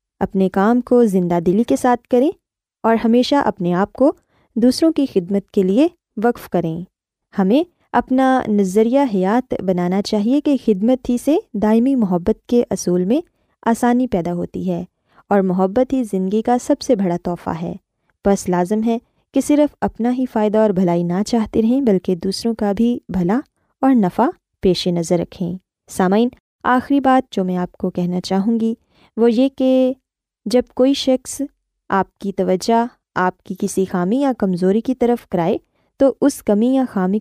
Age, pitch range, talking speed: 20-39, 190-255 Hz, 170 wpm